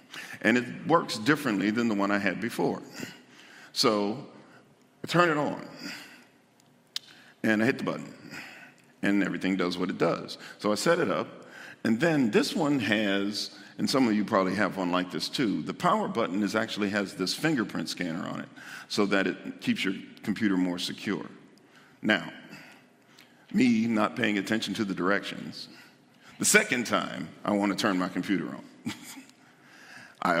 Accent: American